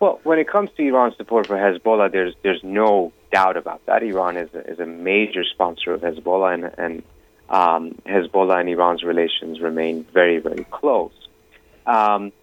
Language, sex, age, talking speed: English, male, 30-49, 170 wpm